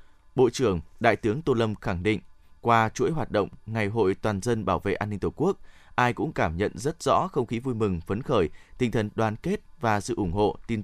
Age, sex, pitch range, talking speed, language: 20-39, male, 100-125 Hz, 240 wpm, Vietnamese